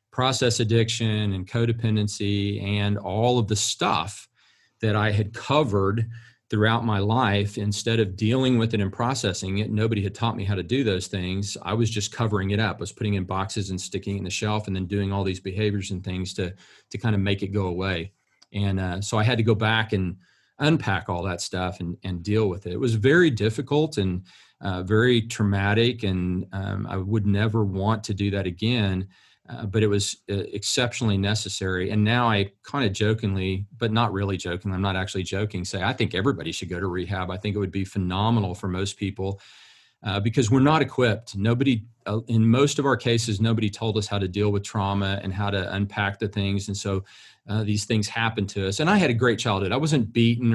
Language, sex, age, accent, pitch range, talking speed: English, male, 40-59, American, 95-115 Hz, 215 wpm